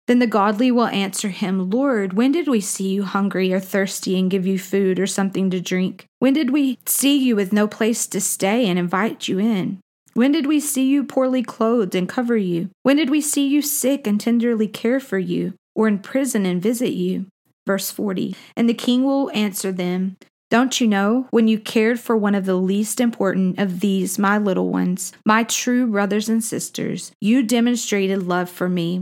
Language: English